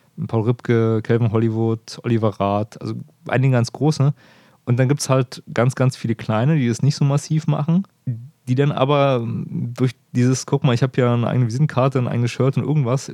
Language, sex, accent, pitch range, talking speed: German, male, German, 115-140 Hz, 195 wpm